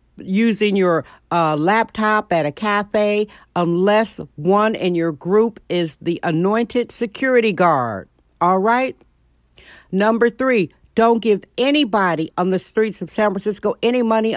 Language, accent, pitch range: English, American, 175-230 Hz